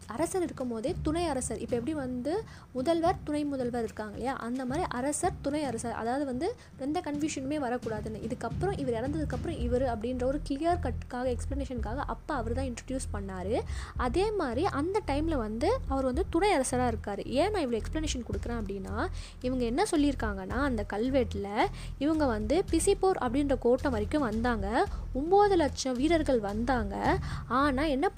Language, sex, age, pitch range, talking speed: Tamil, female, 20-39, 235-315 Hz, 150 wpm